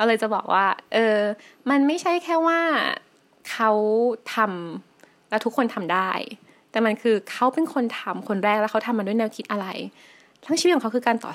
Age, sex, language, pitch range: 20-39, female, Thai, 210-285 Hz